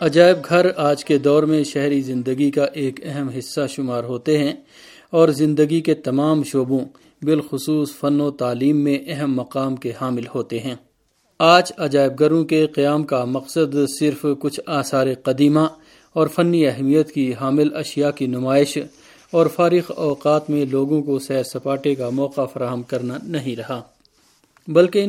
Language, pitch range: Urdu, 135-155 Hz